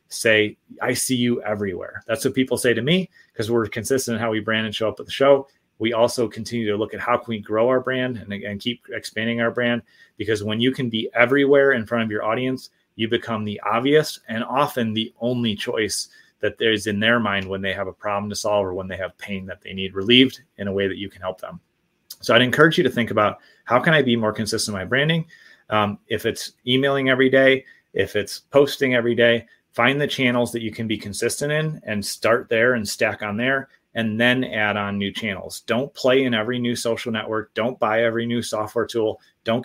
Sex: male